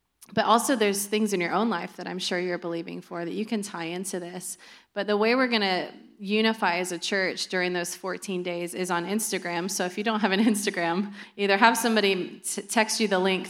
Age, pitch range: 20-39, 175-205 Hz